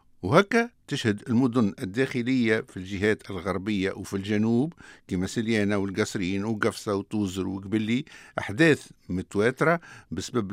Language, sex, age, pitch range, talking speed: Arabic, male, 60-79, 105-145 Hz, 105 wpm